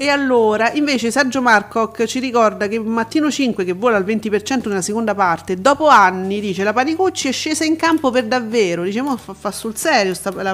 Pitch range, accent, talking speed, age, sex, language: 185-230 Hz, native, 210 wpm, 40-59, female, Italian